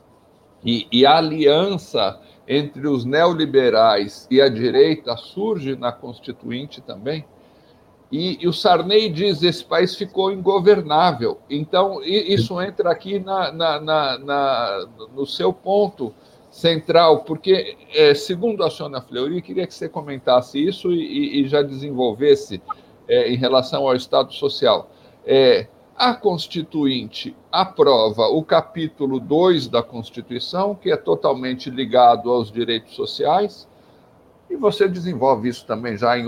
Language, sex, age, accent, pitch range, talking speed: English, male, 60-79, Brazilian, 130-205 Hz, 135 wpm